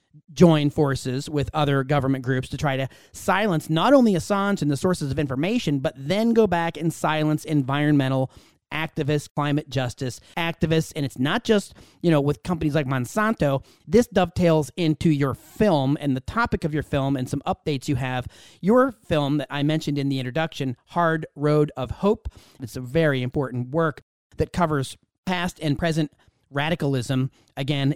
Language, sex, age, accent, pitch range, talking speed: English, male, 30-49, American, 135-180 Hz, 170 wpm